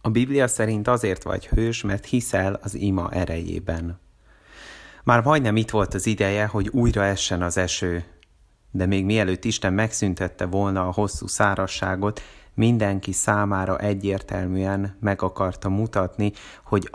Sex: male